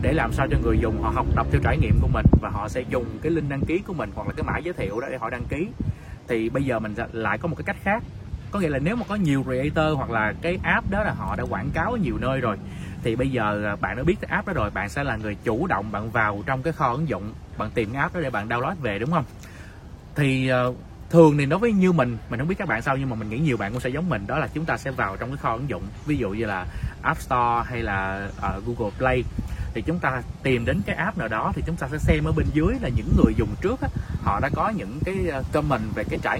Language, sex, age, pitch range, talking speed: Vietnamese, male, 20-39, 105-150 Hz, 290 wpm